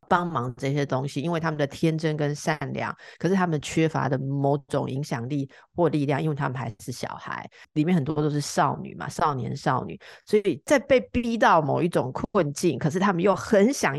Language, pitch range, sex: Chinese, 140-175 Hz, female